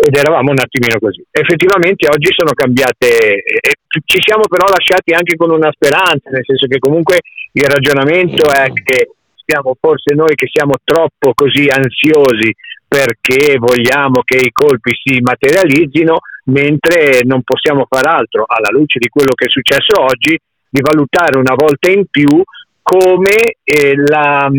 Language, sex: Italian, male